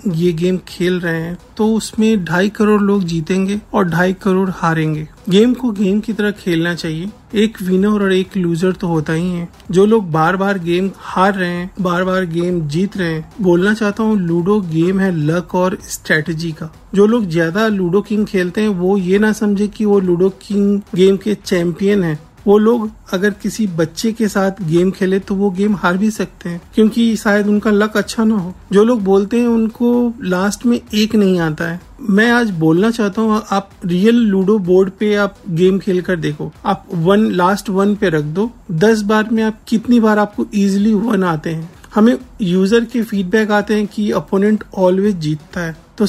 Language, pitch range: Hindi, 180-210 Hz